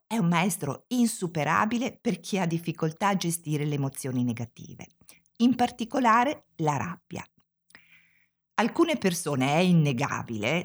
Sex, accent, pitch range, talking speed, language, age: female, native, 135-215 Hz, 120 wpm, Italian, 50-69